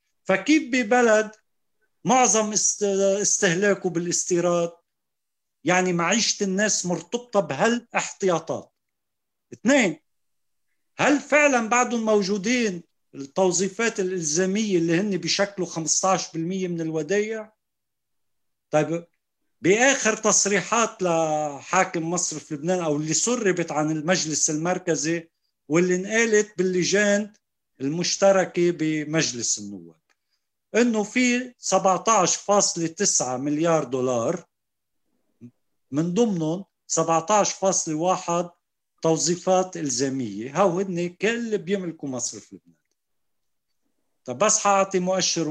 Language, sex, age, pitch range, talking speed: Arabic, male, 50-69, 165-210 Hz, 85 wpm